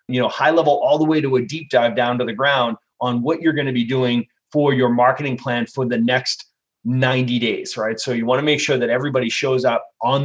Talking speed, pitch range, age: 250 wpm, 125-155 Hz, 30-49